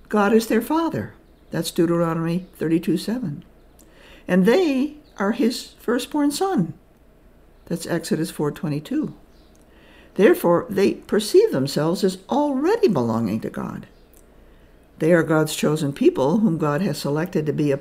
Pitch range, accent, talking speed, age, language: 150-230 Hz, American, 125 wpm, 60-79, English